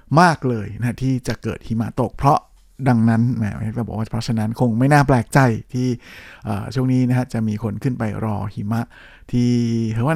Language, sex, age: Thai, male, 60-79